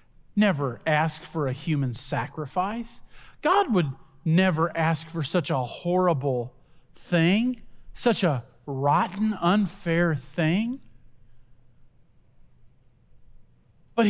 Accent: American